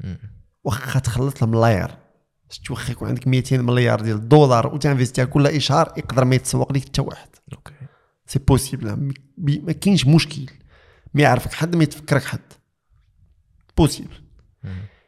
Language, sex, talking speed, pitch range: Arabic, male, 125 wpm, 120-150 Hz